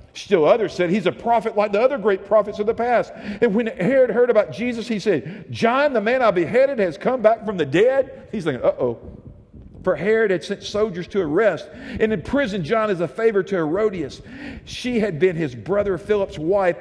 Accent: American